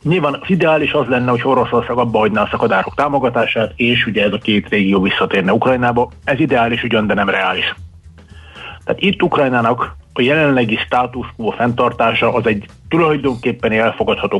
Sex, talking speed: male, 150 wpm